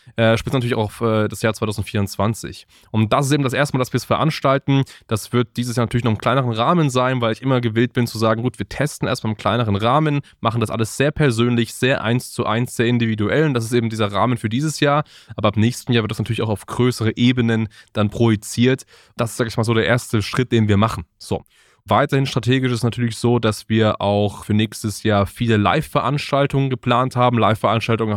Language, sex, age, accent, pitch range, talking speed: German, male, 20-39, German, 110-135 Hz, 225 wpm